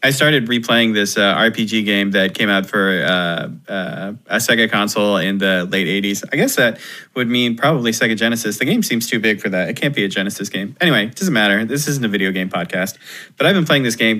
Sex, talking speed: male, 240 wpm